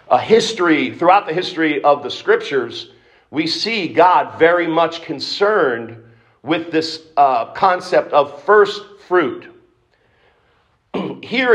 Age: 50-69